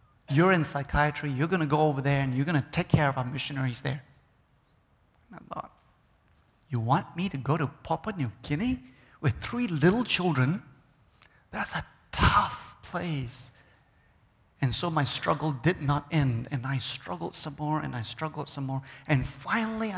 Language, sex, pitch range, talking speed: English, male, 125-150 Hz, 175 wpm